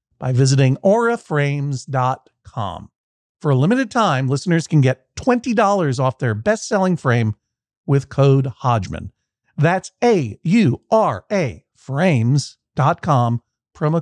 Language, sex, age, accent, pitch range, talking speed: English, male, 50-69, American, 125-175 Hz, 90 wpm